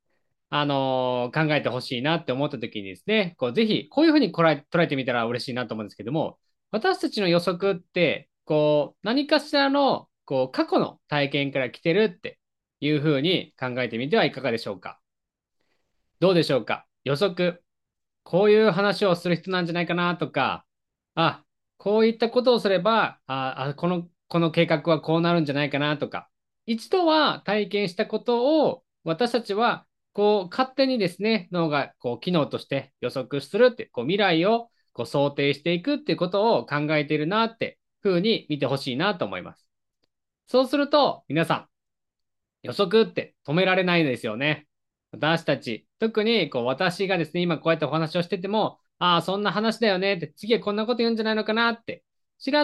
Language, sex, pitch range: Japanese, male, 145-225 Hz